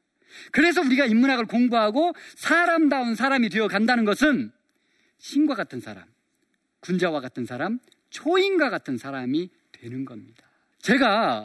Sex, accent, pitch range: male, native, 210-305 Hz